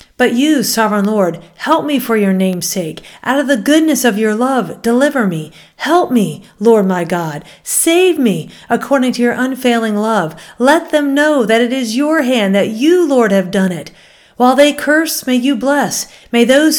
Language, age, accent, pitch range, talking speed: English, 50-69, American, 185-250 Hz, 190 wpm